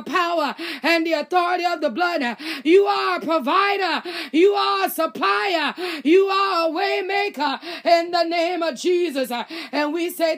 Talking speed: 160 wpm